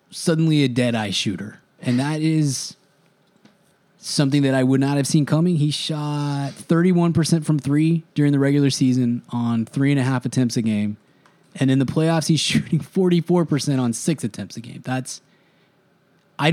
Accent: American